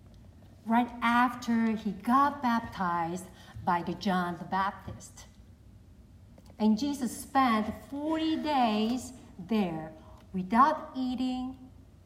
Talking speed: 90 wpm